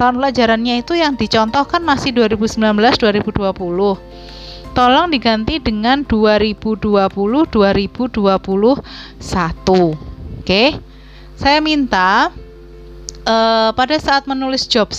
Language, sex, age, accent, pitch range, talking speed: Indonesian, female, 30-49, native, 195-250 Hz, 80 wpm